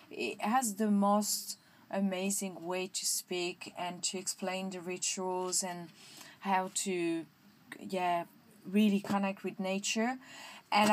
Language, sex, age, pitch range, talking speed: English, female, 20-39, 190-220 Hz, 120 wpm